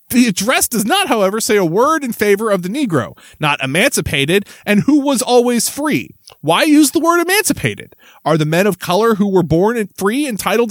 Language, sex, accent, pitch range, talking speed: English, male, American, 175-260 Hz, 195 wpm